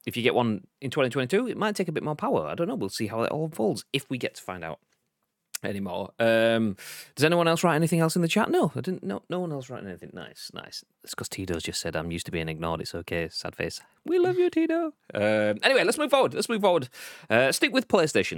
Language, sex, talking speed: English, male, 260 wpm